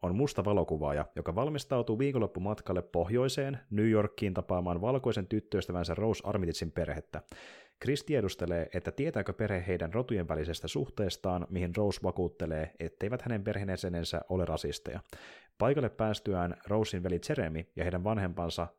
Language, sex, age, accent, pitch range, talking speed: Finnish, male, 30-49, native, 85-105 Hz, 130 wpm